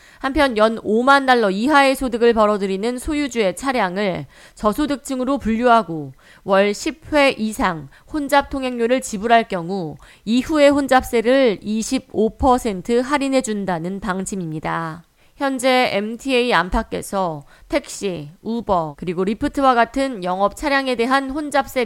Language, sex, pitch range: Korean, female, 190-265 Hz